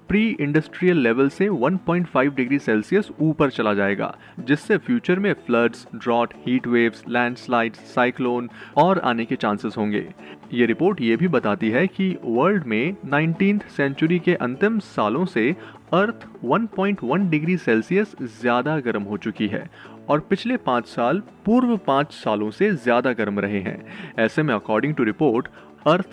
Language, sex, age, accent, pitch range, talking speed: Hindi, male, 30-49, native, 115-185 Hz, 105 wpm